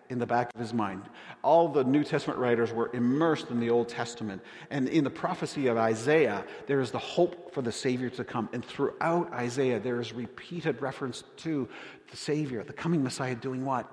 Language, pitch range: English, 120-160 Hz